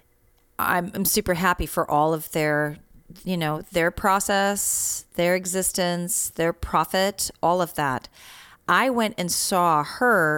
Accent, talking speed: American, 135 wpm